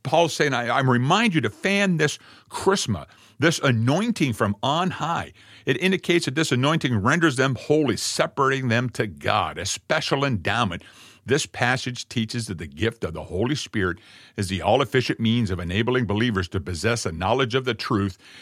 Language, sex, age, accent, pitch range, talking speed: English, male, 50-69, American, 110-140 Hz, 175 wpm